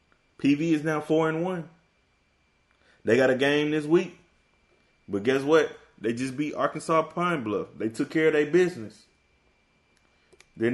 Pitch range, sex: 110-150 Hz, male